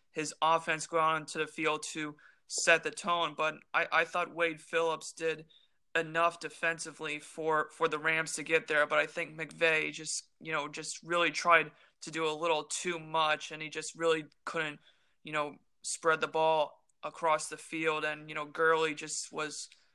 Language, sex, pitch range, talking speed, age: English, male, 150-165 Hz, 185 wpm, 20-39